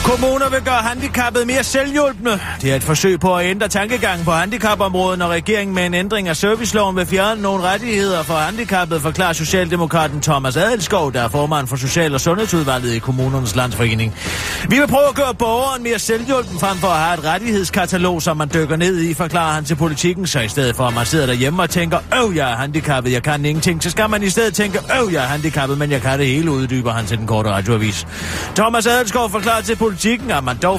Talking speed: 210 wpm